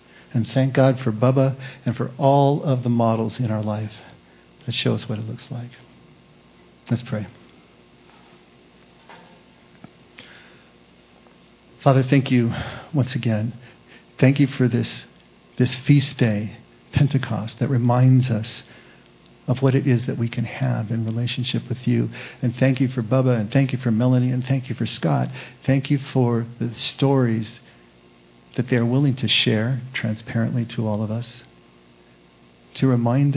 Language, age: English, 50-69